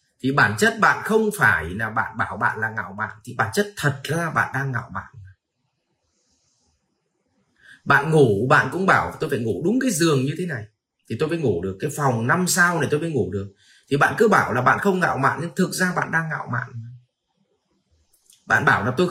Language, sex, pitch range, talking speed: Vietnamese, male, 115-170 Hz, 220 wpm